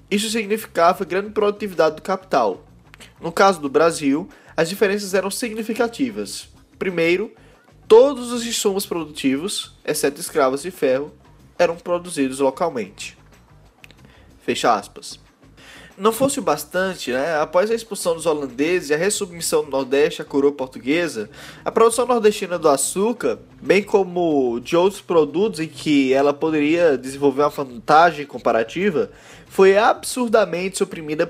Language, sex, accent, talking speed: Portuguese, male, Brazilian, 130 wpm